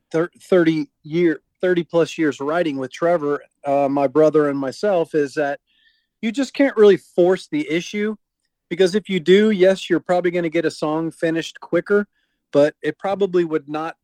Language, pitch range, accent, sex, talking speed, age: English, 150-180 Hz, American, male, 175 wpm, 40-59